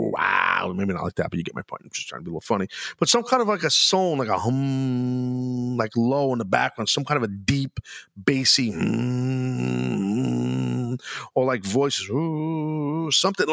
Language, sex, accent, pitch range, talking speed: English, male, American, 115-170 Hz, 195 wpm